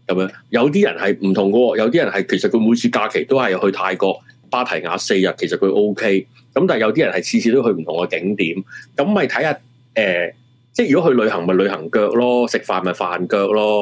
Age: 30-49